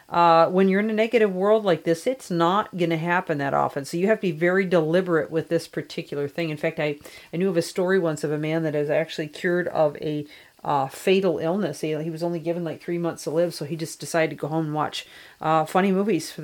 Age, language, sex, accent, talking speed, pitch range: 40-59, English, female, American, 260 wpm, 155-180 Hz